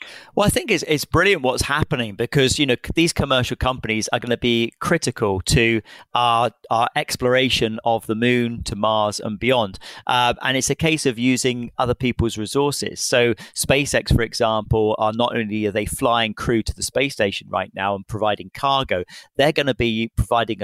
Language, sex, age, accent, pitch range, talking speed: English, male, 40-59, British, 110-125 Hz, 190 wpm